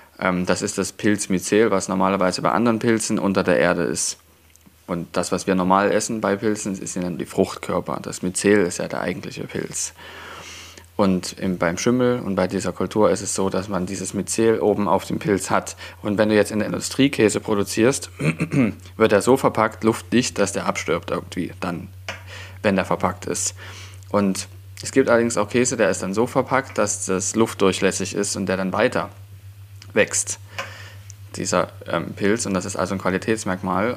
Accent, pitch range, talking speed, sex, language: German, 95-105 Hz, 180 wpm, male, German